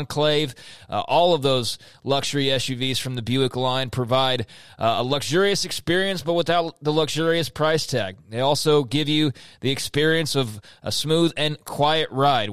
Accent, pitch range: American, 130-155 Hz